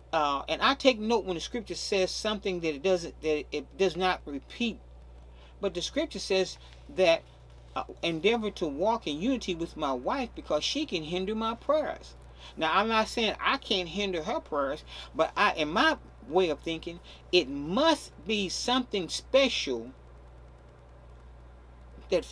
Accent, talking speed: American, 160 wpm